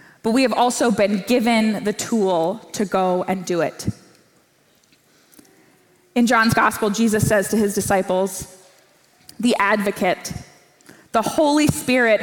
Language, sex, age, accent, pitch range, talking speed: English, female, 20-39, American, 200-240 Hz, 130 wpm